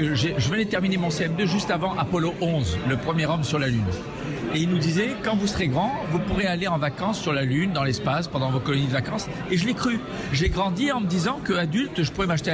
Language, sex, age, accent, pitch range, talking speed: French, male, 50-69, French, 150-200 Hz, 250 wpm